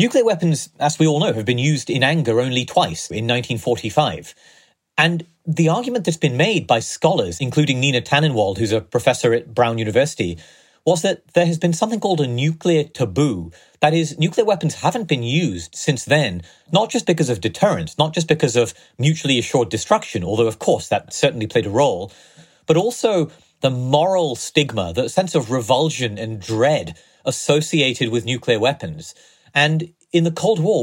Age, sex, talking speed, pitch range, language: 30-49, male, 175 wpm, 125-160 Hz, English